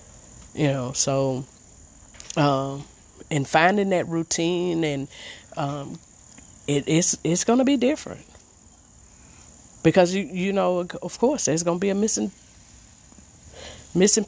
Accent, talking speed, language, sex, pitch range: American, 120 wpm, English, female, 135-195 Hz